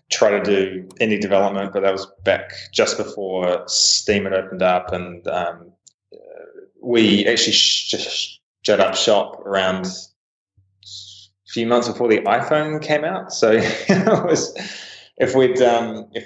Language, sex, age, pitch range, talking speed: English, male, 20-39, 90-115 Hz, 155 wpm